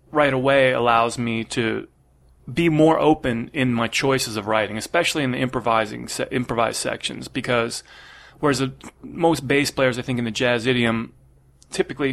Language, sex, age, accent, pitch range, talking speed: English, male, 30-49, American, 115-145 Hz, 165 wpm